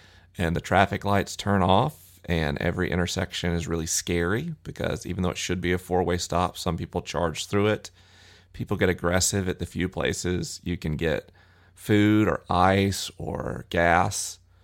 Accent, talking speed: American, 170 wpm